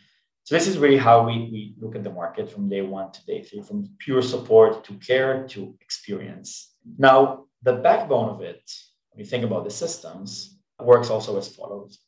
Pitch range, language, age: 110-135 Hz, English, 20-39